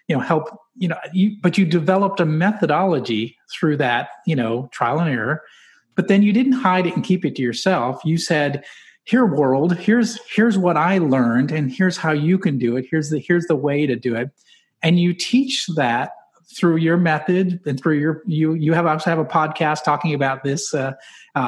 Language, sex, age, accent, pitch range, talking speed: English, male, 40-59, American, 135-180 Hz, 205 wpm